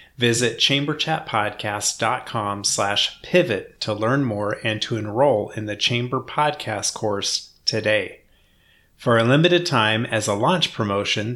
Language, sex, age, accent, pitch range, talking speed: English, male, 30-49, American, 110-140 Hz, 120 wpm